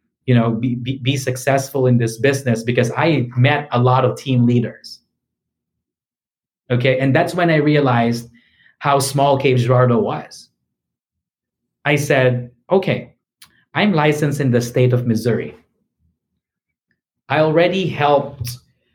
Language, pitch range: English, 130-175 Hz